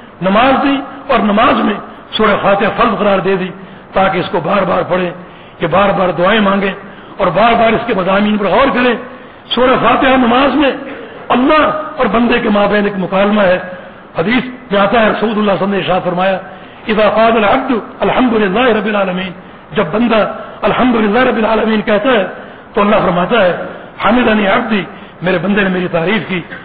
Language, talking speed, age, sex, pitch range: English, 185 wpm, 60-79, male, 195-245 Hz